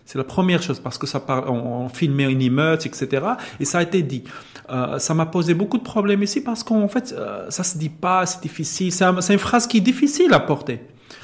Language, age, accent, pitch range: French, 30-49, French, 140-185 Hz